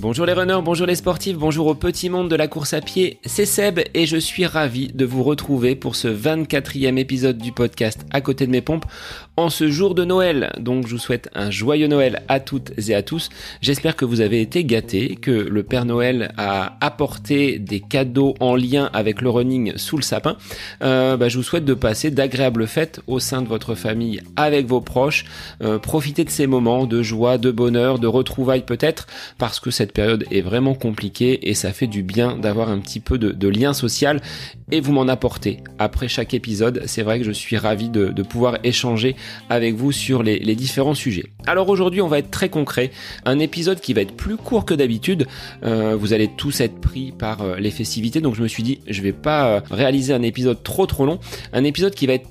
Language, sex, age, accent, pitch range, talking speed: French, male, 30-49, French, 110-145 Hz, 225 wpm